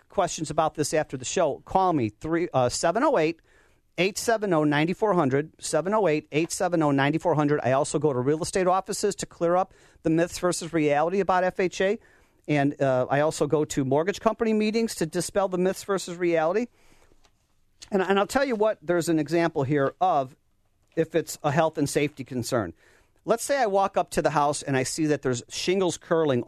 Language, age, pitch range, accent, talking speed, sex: English, 40-59, 140-190 Hz, American, 170 wpm, male